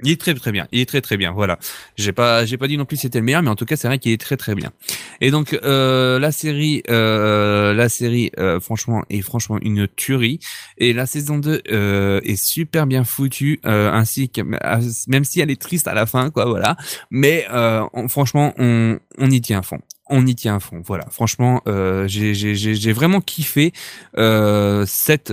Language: French